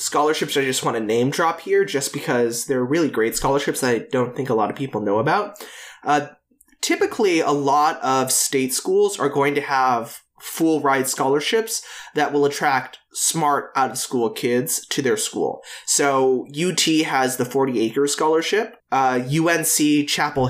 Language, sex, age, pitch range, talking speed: English, male, 20-39, 130-160 Hz, 165 wpm